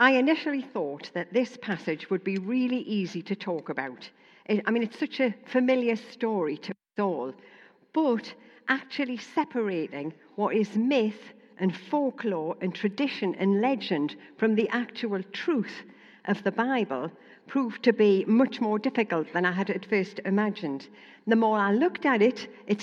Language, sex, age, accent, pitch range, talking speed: English, female, 60-79, British, 185-240 Hz, 160 wpm